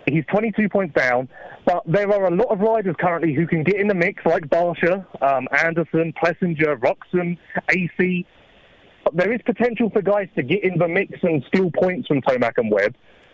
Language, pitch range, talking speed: English, 150-190 Hz, 190 wpm